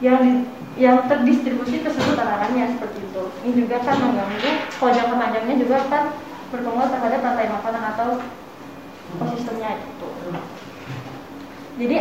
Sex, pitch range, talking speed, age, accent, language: female, 235-275 Hz, 115 wpm, 20-39, native, Indonesian